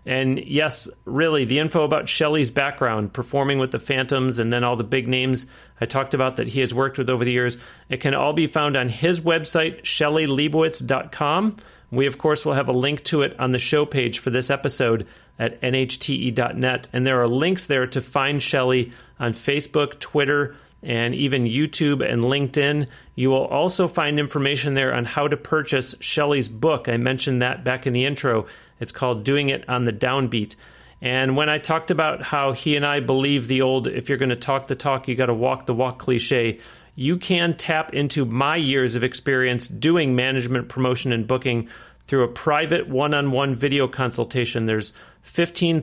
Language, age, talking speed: English, 40-59, 190 wpm